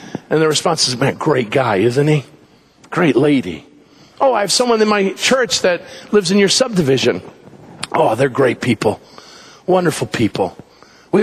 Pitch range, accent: 160-200 Hz, American